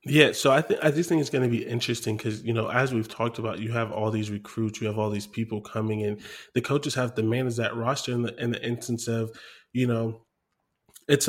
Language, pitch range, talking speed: English, 110-125 Hz, 245 wpm